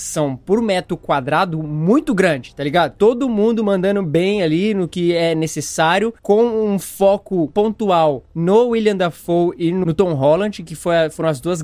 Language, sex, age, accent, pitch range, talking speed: Portuguese, male, 20-39, Brazilian, 160-210 Hz, 160 wpm